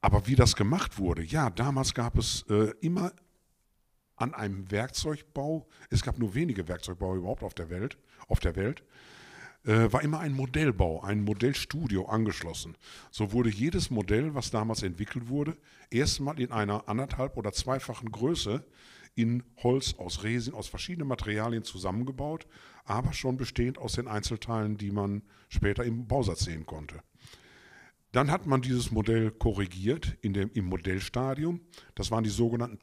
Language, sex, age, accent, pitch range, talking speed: German, male, 50-69, German, 95-120 Hz, 150 wpm